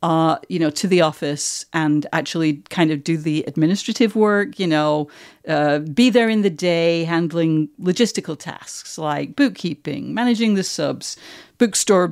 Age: 50-69